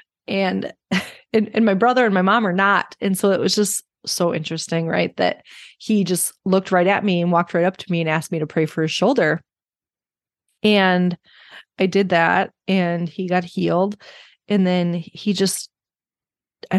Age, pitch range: 30-49, 170-200 Hz